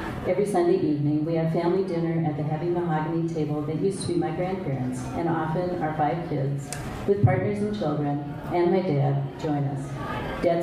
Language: English